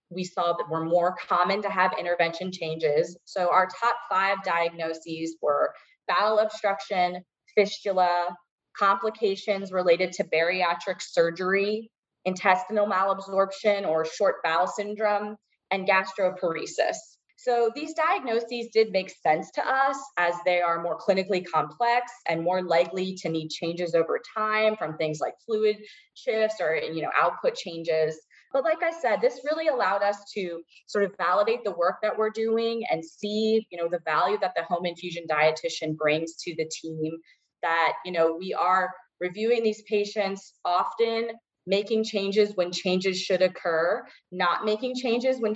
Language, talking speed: English, 150 wpm